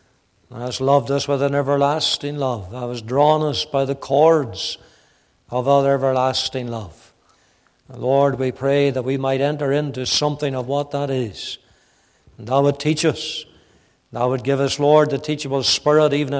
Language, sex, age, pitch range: English, male, 60-79, 135-155 Hz